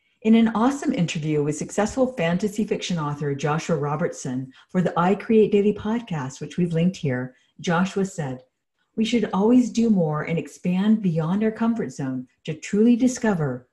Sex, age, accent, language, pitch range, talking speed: female, 50-69, American, English, 155-210 Hz, 160 wpm